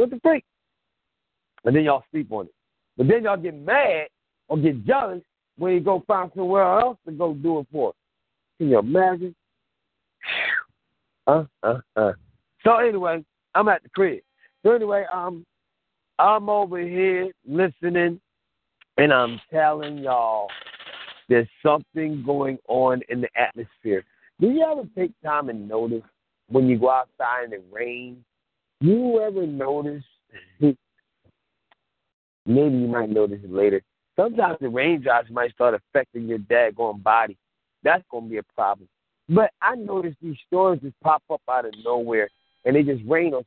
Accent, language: American, English